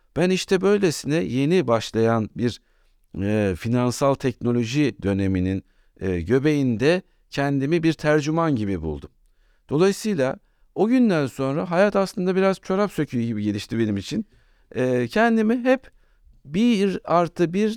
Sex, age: male, 60-79